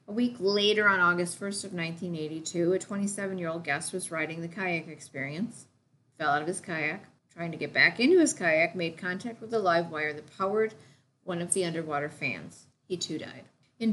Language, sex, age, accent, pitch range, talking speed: English, female, 40-59, American, 150-190 Hz, 195 wpm